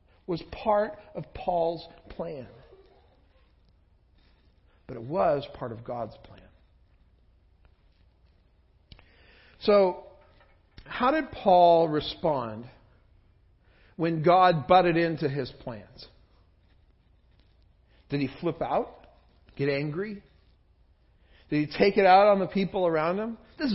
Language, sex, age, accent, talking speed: English, male, 50-69, American, 100 wpm